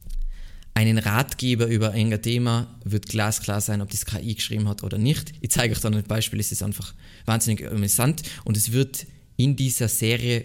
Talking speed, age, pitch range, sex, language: 185 wpm, 20-39, 105-135 Hz, male, German